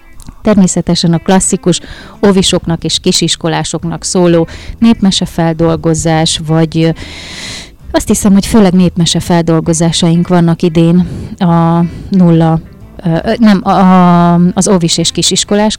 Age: 30-49